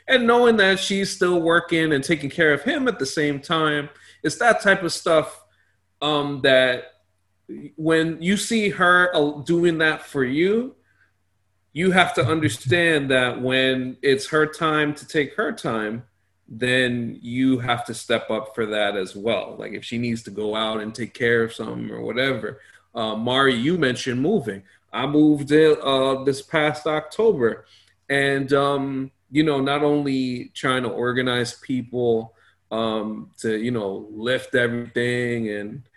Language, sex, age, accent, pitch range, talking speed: English, male, 30-49, American, 115-155 Hz, 160 wpm